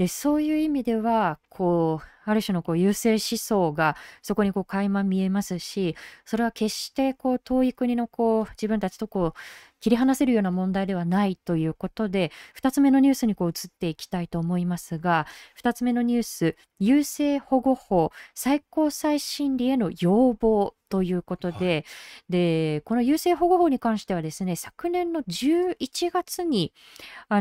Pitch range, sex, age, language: 180-265 Hz, female, 20-39, Japanese